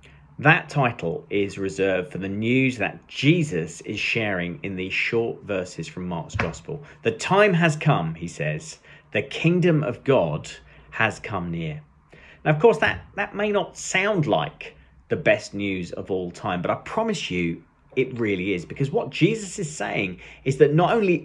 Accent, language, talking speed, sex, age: British, English, 175 wpm, male, 40-59